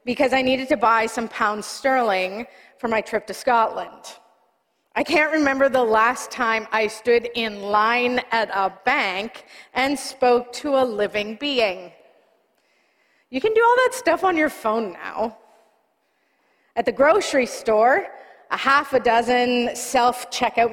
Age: 30-49